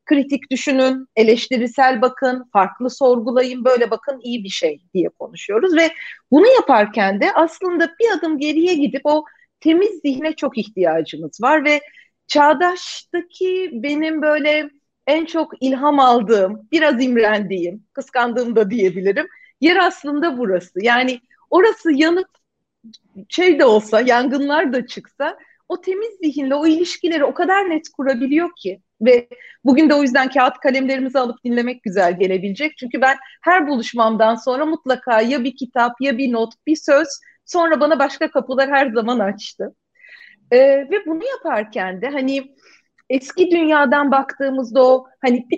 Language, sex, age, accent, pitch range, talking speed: Turkish, female, 40-59, native, 240-315 Hz, 140 wpm